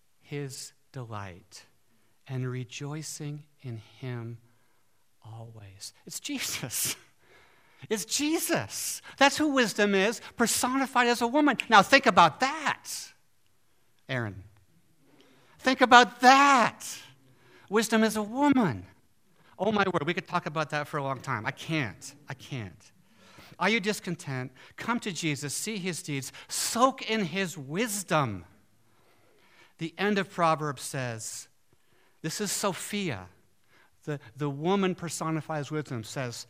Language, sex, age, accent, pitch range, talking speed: English, male, 60-79, American, 115-180 Hz, 125 wpm